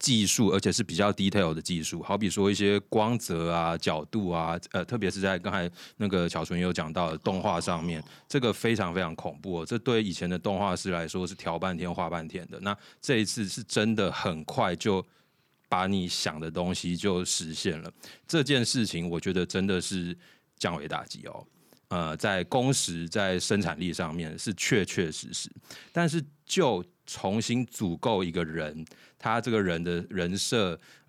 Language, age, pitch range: Chinese, 20-39, 85-105 Hz